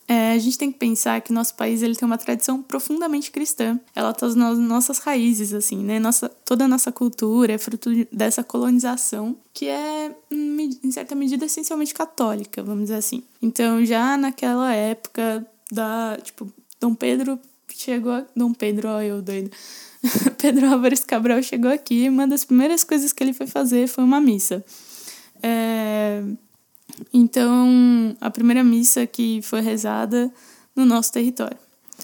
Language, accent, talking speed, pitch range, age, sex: Portuguese, Brazilian, 155 wpm, 220-255 Hz, 10-29, female